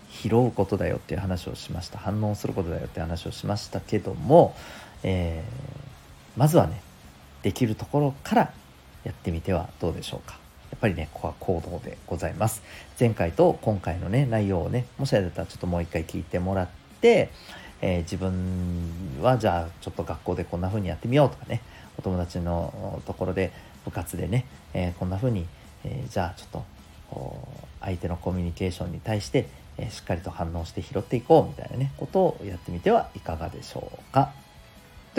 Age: 40-59